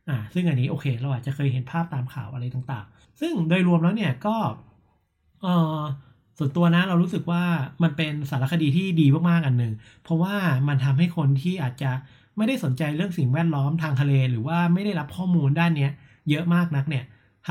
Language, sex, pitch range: Thai, male, 130-170 Hz